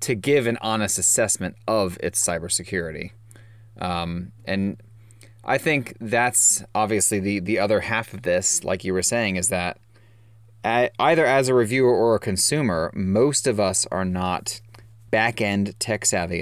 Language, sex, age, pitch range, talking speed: English, male, 30-49, 95-115 Hz, 150 wpm